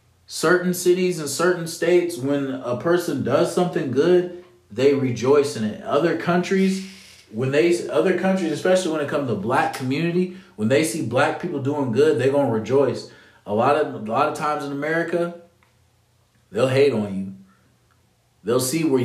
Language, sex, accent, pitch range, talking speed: English, male, American, 115-145 Hz, 170 wpm